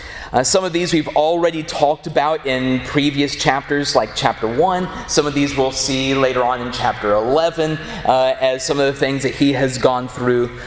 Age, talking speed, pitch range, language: 30-49, 195 wpm, 125-160 Hz, English